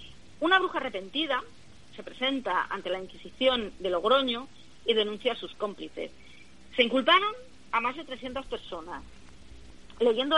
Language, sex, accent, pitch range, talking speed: Spanish, female, Spanish, 190-285 Hz, 135 wpm